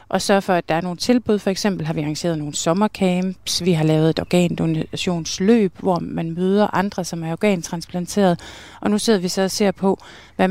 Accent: native